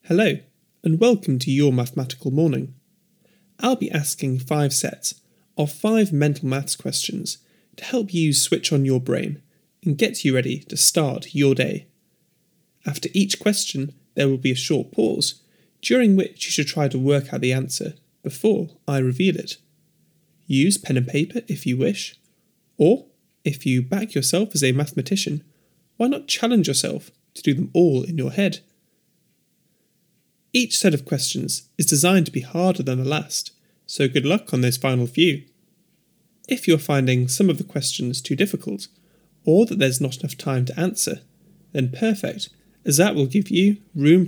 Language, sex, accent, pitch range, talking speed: English, male, British, 140-195 Hz, 170 wpm